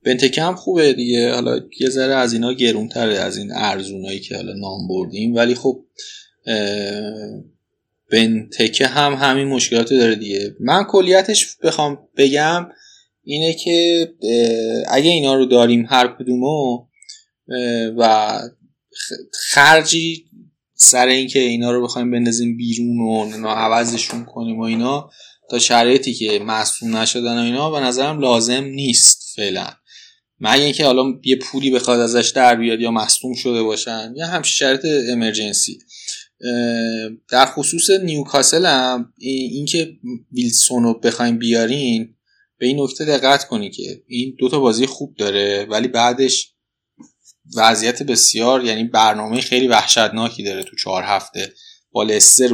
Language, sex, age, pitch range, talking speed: Persian, male, 20-39, 115-140 Hz, 130 wpm